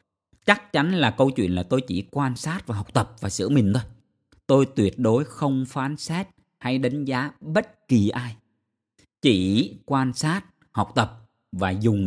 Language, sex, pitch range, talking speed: Vietnamese, male, 95-135 Hz, 180 wpm